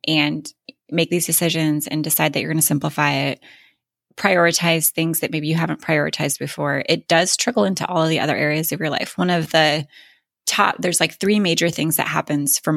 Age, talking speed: 20-39, 205 wpm